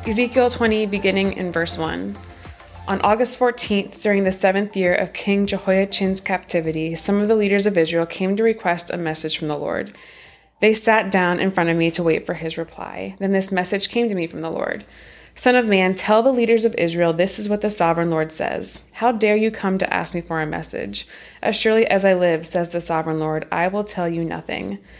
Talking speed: 220 wpm